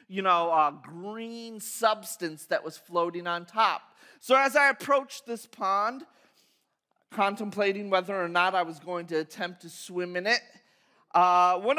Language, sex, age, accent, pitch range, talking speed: English, male, 30-49, American, 180-240 Hz, 160 wpm